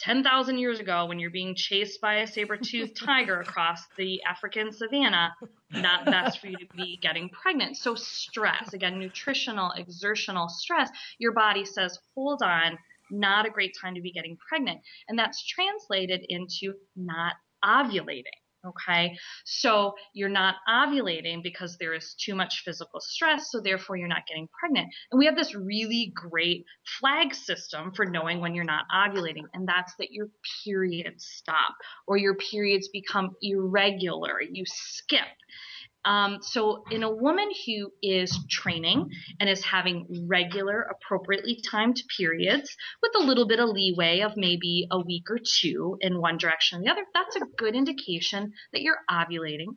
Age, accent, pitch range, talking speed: 20-39, American, 180-235 Hz, 160 wpm